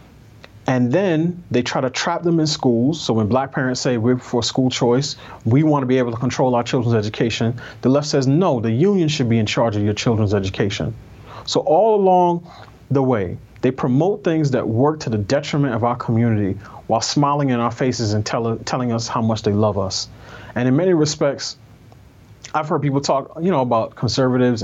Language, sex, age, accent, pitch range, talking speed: English, male, 30-49, American, 110-135 Hz, 200 wpm